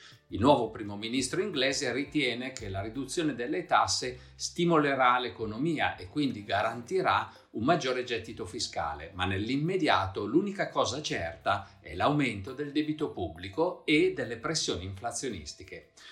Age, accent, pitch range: 50-69, native, 95-140 Hz